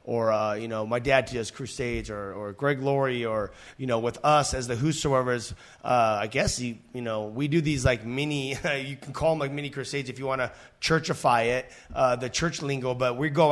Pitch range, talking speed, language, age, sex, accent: 130-170 Hz, 225 wpm, English, 30-49, male, American